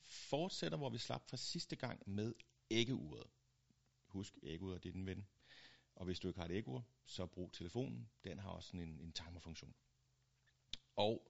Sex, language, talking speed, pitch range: male, Danish, 170 wpm, 95-130 Hz